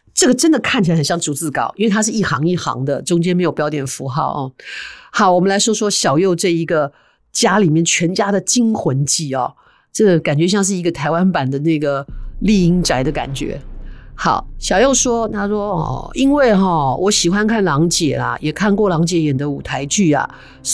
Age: 50-69